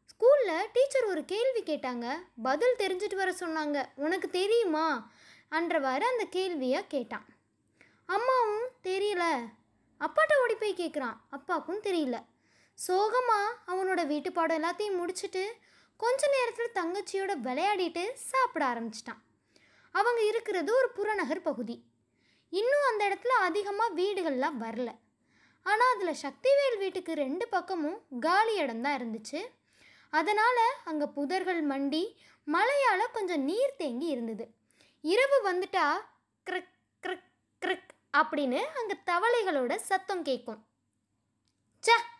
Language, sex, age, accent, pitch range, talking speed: Tamil, female, 20-39, native, 280-425 Hz, 105 wpm